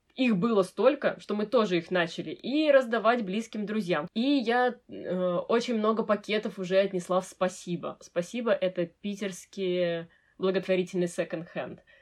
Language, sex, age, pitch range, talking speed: Russian, female, 20-39, 180-245 Hz, 135 wpm